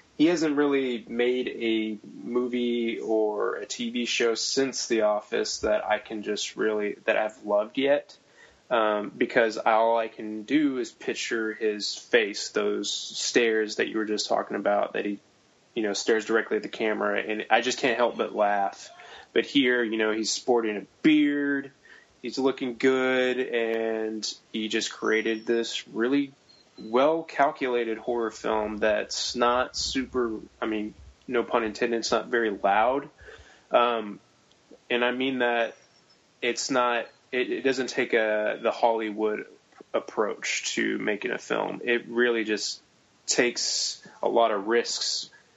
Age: 20-39